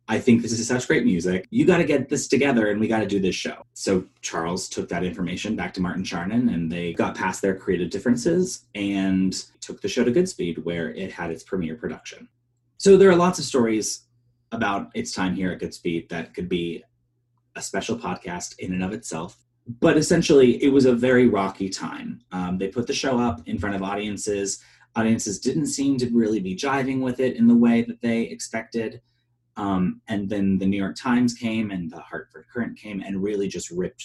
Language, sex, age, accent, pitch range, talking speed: English, male, 30-49, American, 95-125 Hz, 210 wpm